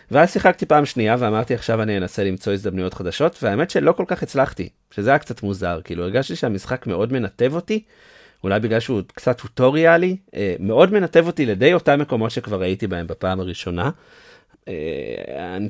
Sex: male